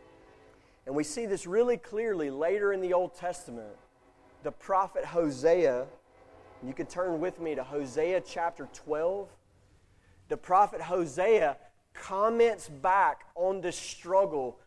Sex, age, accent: male, 30-49, American